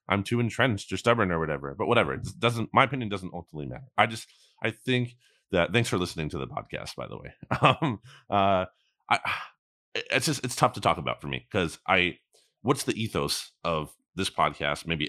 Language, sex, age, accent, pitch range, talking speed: English, male, 30-49, American, 90-125 Hz, 205 wpm